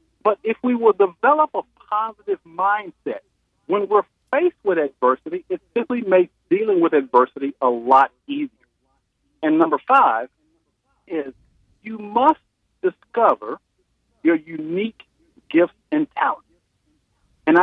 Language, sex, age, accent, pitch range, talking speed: English, male, 50-69, American, 170-280 Hz, 120 wpm